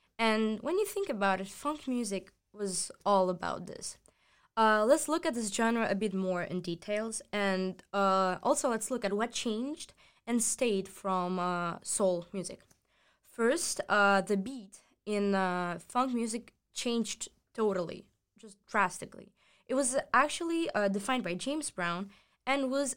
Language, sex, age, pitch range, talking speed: English, female, 20-39, 190-235 Hz, 155 wpm